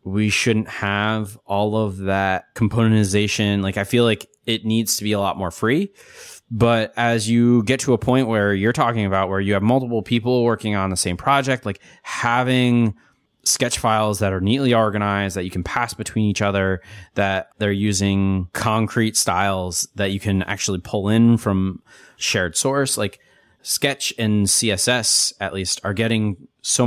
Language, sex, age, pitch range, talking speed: English, male, 20-39, 95-115 Hz, 175 wpm